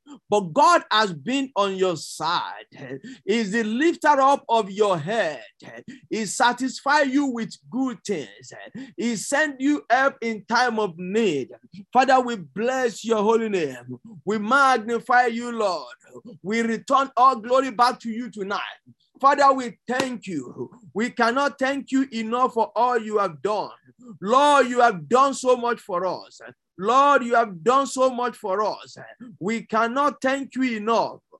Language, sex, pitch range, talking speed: English, male, 220-270 Hz, 155 wpm